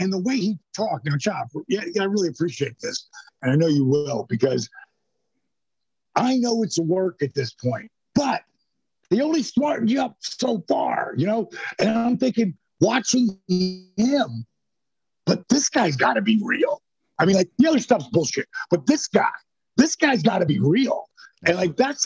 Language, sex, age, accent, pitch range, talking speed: English, male, 50-69, American, 155-220 Hz, 185 wpm